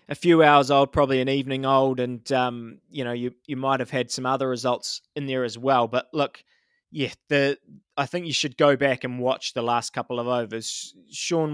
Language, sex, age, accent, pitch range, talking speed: English, male, 20-39, Australian, 130-155 Hz, 220 wpm